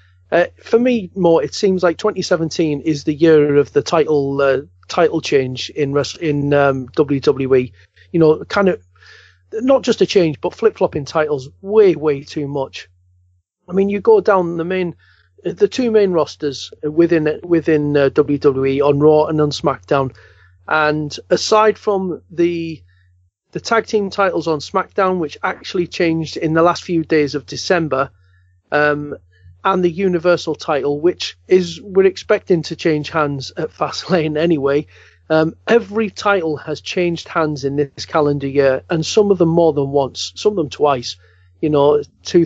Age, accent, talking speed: 40-59, British, 165 wpm